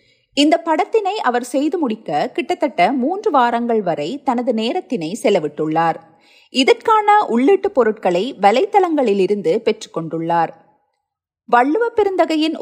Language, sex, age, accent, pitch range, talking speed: Tamil, female, 30-49, native, 210-335 Hz, 95 wpm